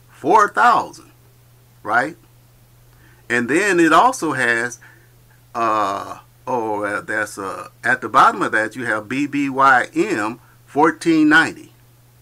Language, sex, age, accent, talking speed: English, male, 50-69, American, 105 wpm